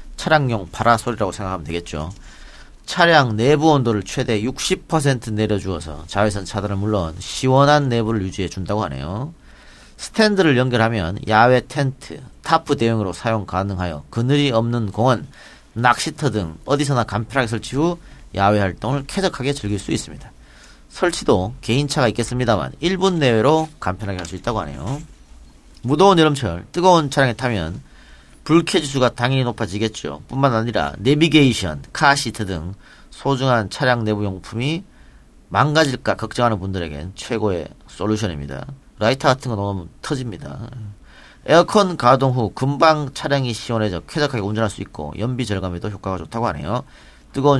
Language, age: Korean, 40-59